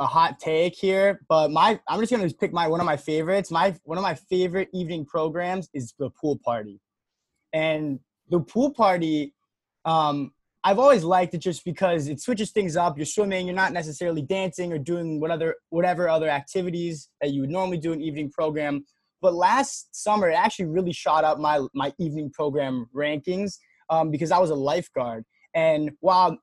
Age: 20-39